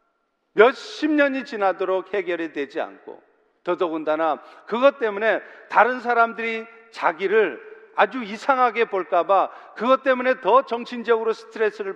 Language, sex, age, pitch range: Korean, male, 40-59, 195-265 Hz